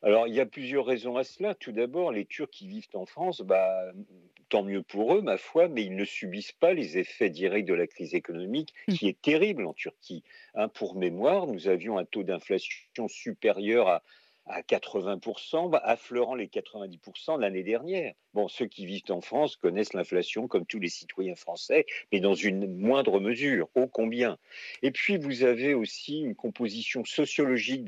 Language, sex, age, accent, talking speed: French, male, 50-69, French, 185 wpm